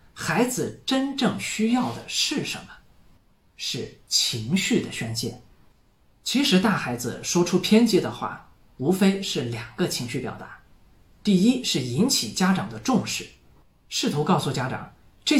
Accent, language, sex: native, Chinese, male